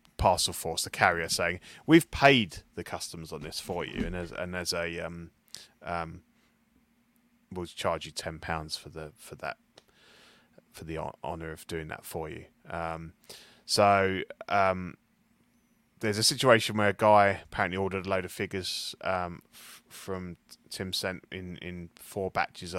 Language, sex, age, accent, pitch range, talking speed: English, male, 20-39, British, 85-110 Hz, 160 wpm